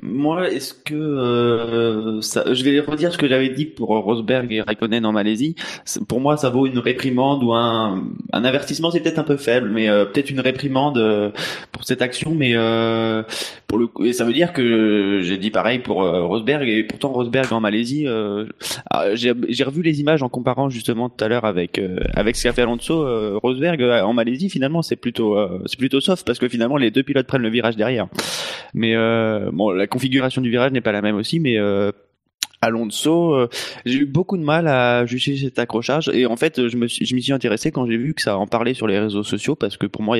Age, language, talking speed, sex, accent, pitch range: 20-39, French, 235 wpm, male, French, 115-140 Hz